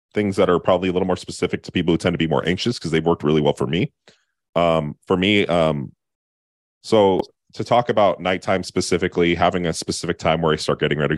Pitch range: 70-95 Hz